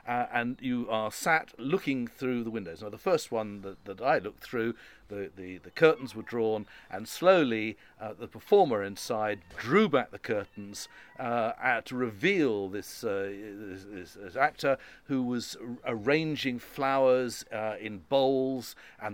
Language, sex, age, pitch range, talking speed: English, male, 50-69, 110-150 Hz, 160 wpm